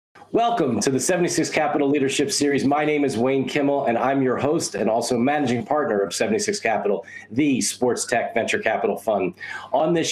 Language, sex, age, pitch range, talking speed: English, male, 40-59, 135-165 Hz, 185 wpm